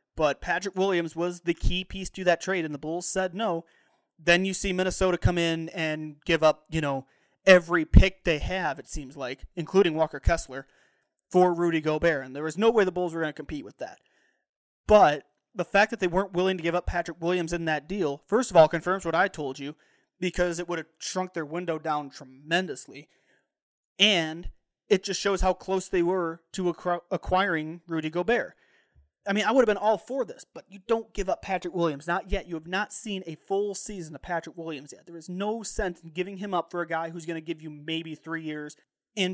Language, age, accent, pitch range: English, 30-49, American, 160-190 Hz